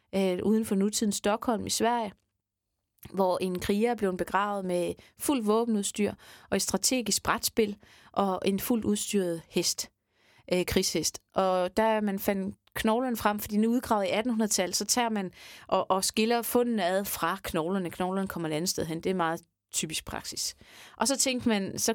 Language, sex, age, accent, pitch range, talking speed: Danish, female, 30-49, native, 180-220 Hz, 175 wpm